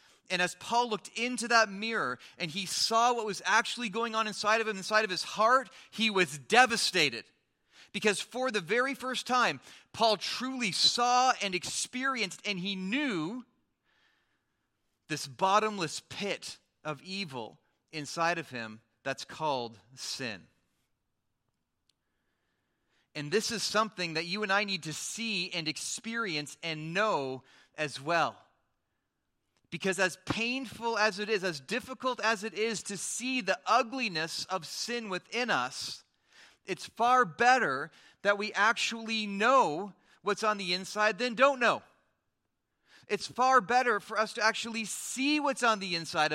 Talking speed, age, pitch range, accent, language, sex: 145 wpm, 30-49, 175-235 Hz, American, English, male